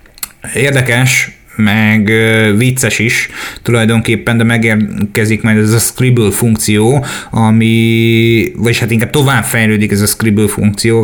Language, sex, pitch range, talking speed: Hungarian, male, 105-120 Hz, 120 wpm